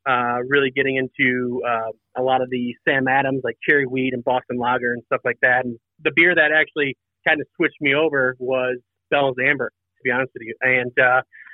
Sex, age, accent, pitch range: male, 30-49, American, 125-150 Hz